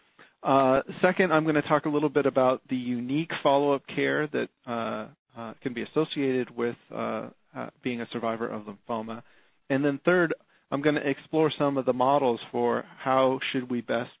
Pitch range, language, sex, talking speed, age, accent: 125-150 Hz, English, male, 185 wpm, 40-59, American